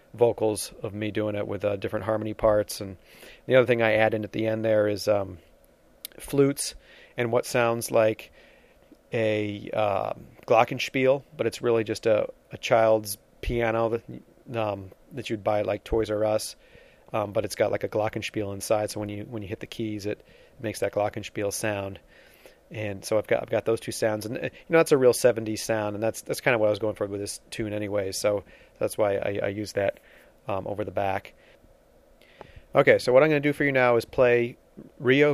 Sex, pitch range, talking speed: male, 105-115 Hz, 210 wpm